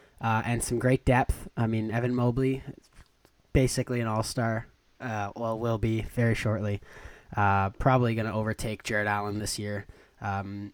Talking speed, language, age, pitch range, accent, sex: 160 wpm, English, 20-39, 105-135 Hz, American, male